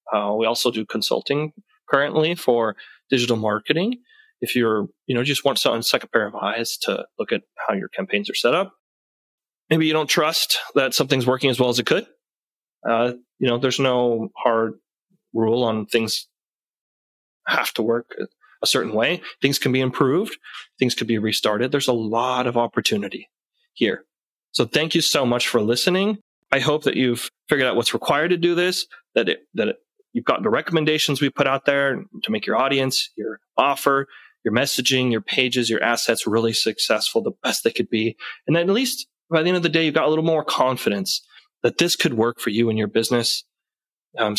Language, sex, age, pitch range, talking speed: English, male, 30-49, 115-160 Hz, 195 wpm